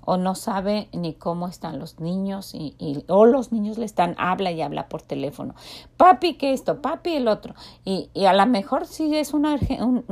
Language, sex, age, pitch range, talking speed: Spanish, female, 40-59, 185-260 Hz, 210 wpm